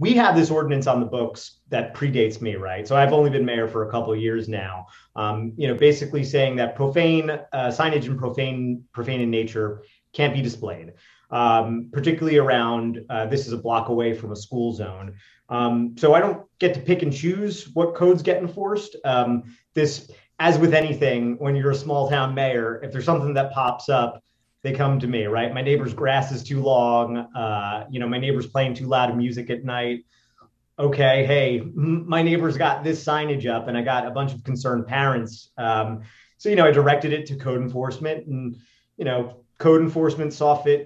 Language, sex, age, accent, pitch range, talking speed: English, male, 30-49, American, 120-145 Hz, 200 wpm